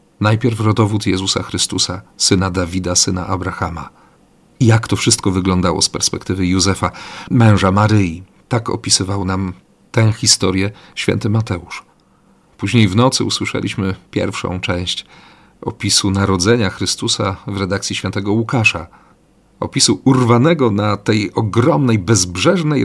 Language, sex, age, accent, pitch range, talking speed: Polish, male, 40-59, native, 95-115 Hz, 115 wpm